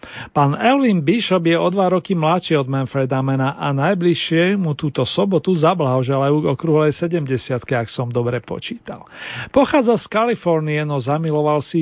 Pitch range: 150-185 Hz